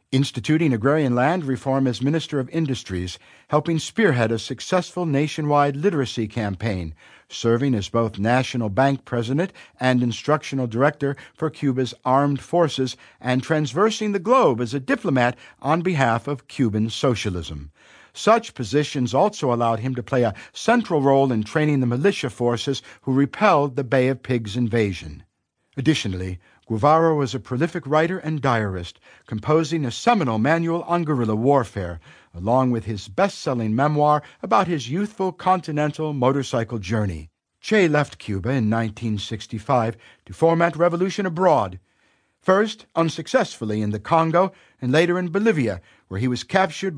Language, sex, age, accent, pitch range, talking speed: English, male, 50-69, American, 115-160 Hz, 140 wpm